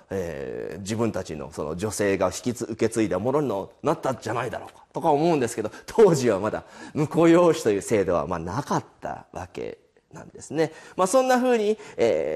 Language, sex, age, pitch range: Japanese, male, 40-59, 150-225 Hz